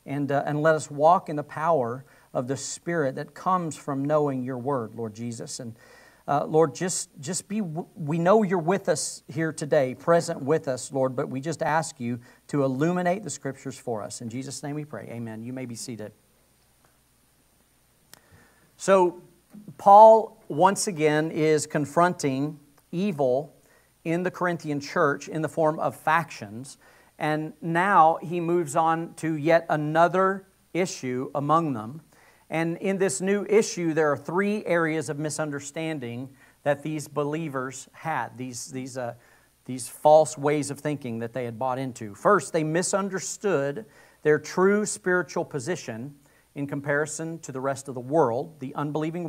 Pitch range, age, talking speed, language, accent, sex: 135-175 Hz, 50-69, 160 wpm, English, American, male